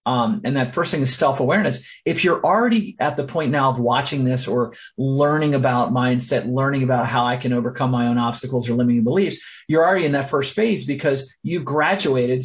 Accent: American